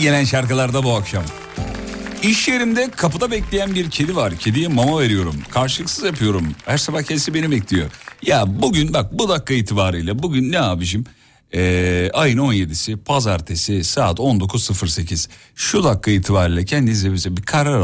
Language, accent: Turkish, native